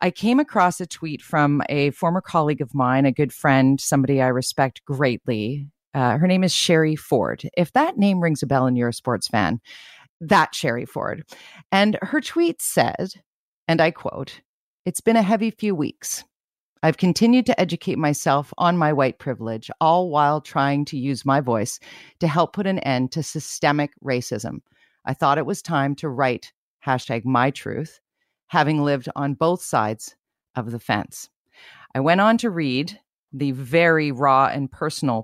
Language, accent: English, American